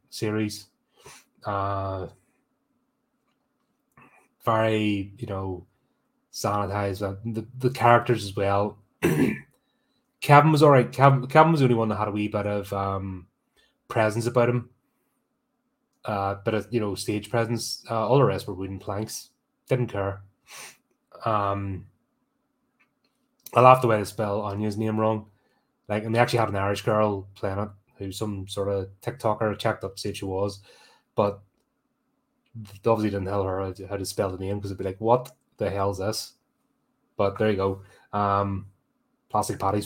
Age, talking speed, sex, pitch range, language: 20-39, 155 wpm, male, 100-120 Hz, English